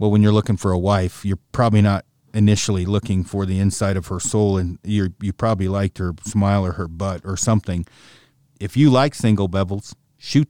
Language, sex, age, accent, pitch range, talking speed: English, male, 40-59, American, 95-120 Hz, 205 wpm